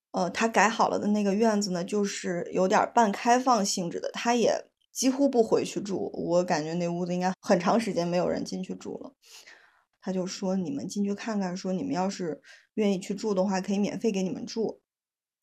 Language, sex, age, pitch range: Chinese, female, 20-39, 190-225 Hz